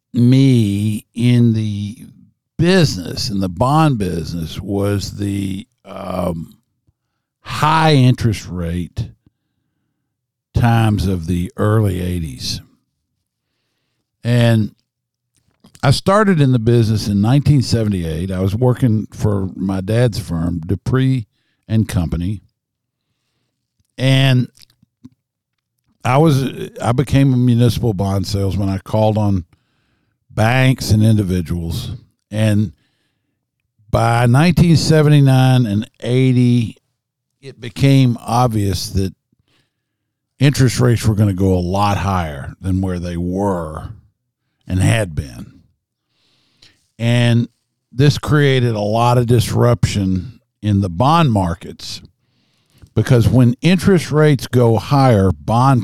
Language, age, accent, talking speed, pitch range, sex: English, 60-79, American, 100 wpm, 100-130 Hz, male